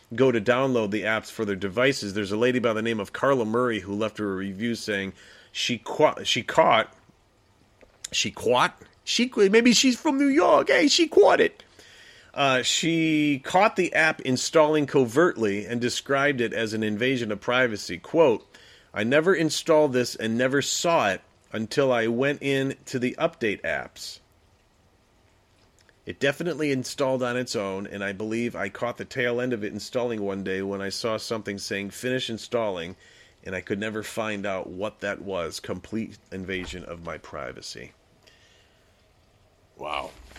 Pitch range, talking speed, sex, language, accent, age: 100-130 Hz, 165 wpm, male, English, American, 40-59